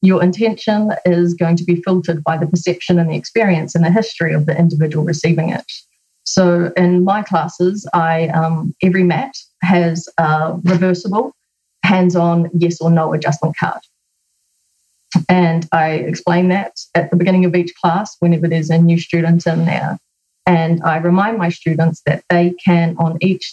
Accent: Australian